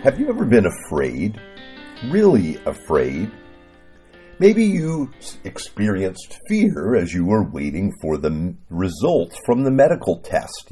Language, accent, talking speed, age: English, American, 125 wpm, 50-69